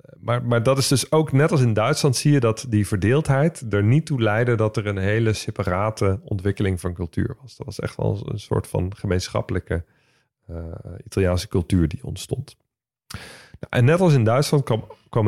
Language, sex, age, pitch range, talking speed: Dutch, male, 40-59, 100-135 Hz, 190 wpm